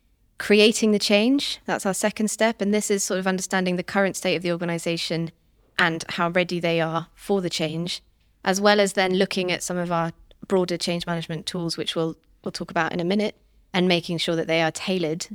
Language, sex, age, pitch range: English, female, 20-39, 165-185 Hz